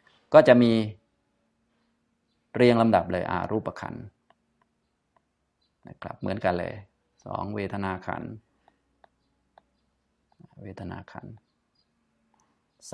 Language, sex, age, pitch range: Thai, male, 30-49, 100-120 Hz